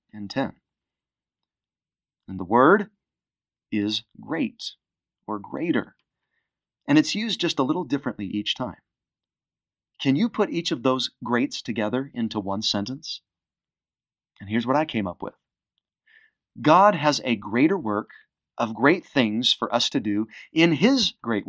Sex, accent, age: male, American, 30-49